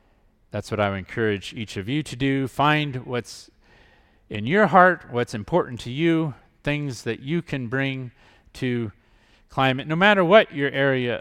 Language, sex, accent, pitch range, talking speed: English, male, American, 105-135 Hz, 165 wpm